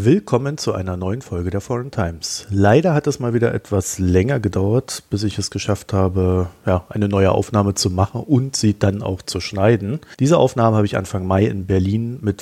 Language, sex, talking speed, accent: German, male, 200 wpm, German